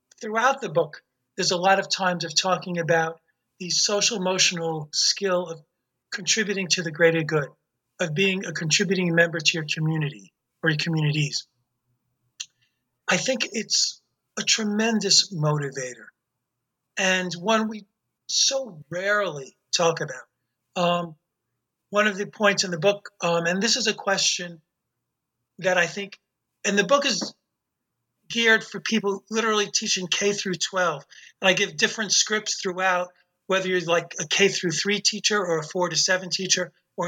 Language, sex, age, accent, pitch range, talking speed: English, male, 40-59, American, 170-205 Hz, 150 wpm